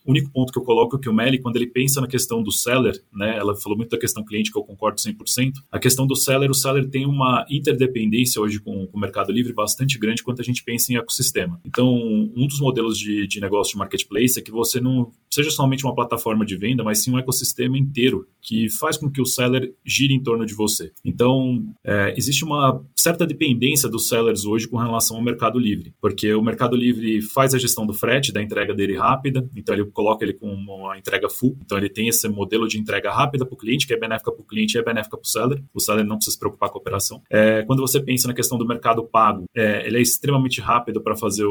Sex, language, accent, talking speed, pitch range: male, Portuguese, Brazilian, 240 wpm, 105-130 Hz